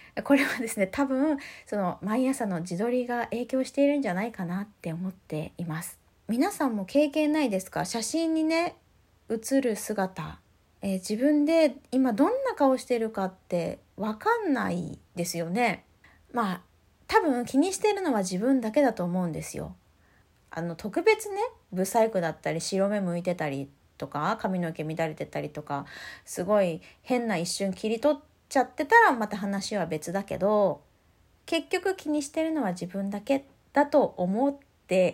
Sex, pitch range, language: female, 180-275 Hz, Japanese